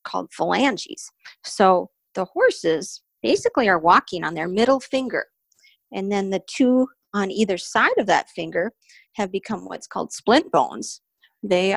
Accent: American